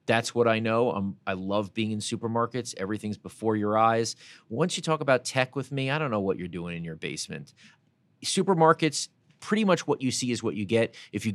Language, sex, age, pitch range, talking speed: English, male, 30-49, 95-120 Hz, 215 wpm